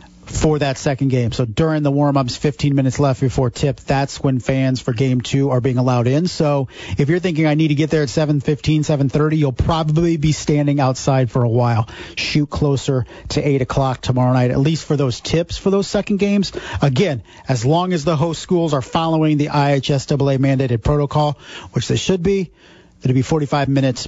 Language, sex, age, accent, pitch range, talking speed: English, male, 40-59, American, 135-170 Hz, 200 wpm